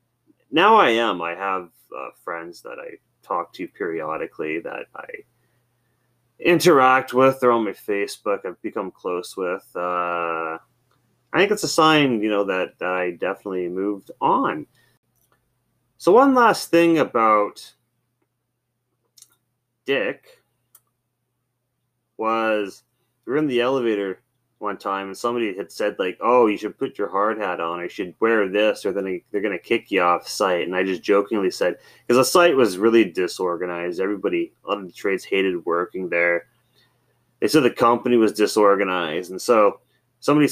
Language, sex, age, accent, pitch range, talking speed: English, male, 30-49, American, 100-135 Hz, 155 wpm